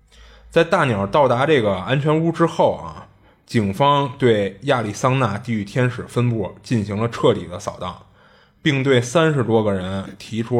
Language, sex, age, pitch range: Chinese, male, 20-39, 100-130 Hz